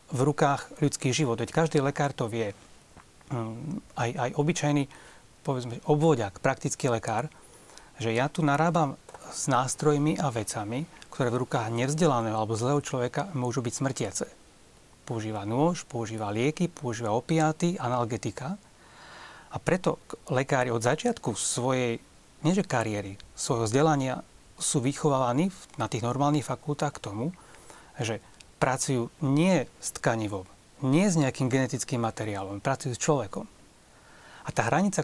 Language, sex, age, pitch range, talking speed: Slovak, male, 30-49, 120-155 Hz, 130 wpm